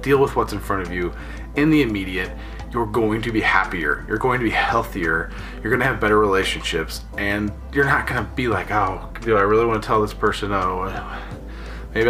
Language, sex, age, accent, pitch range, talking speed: English, male, 20-39, American, 95-110 Hz, 215 wpm